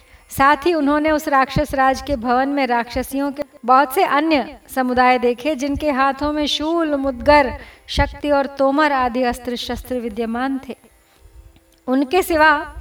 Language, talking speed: Hindi, 145 wpm